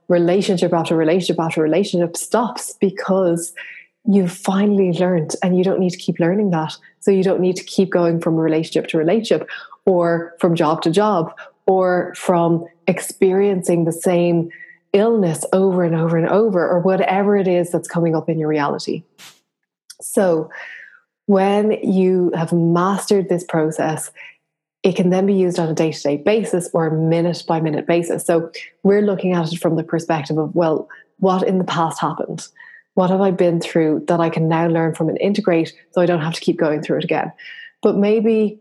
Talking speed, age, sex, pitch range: 185 wpm, 20-39, female, 165-195 Hz